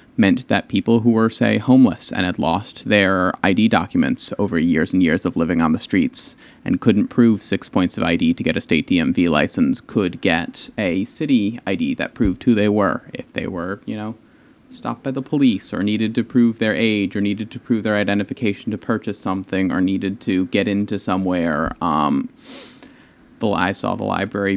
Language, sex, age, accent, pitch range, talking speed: English, male, 30-49, American, 95-135 Hz, 195 wpm